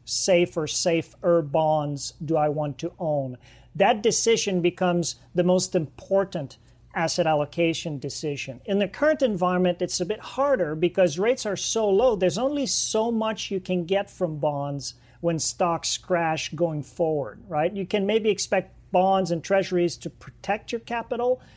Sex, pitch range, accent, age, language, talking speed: male, 155-195 Hz, American, 40-59, English, 155 wpm